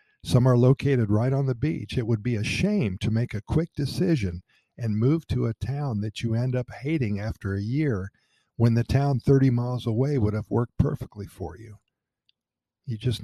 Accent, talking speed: American, 200 wpm